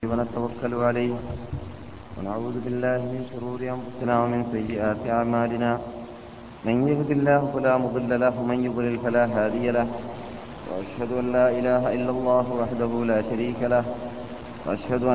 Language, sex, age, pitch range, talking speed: Malayalam, male, 30-49, 115-125 Hz, 140 wpm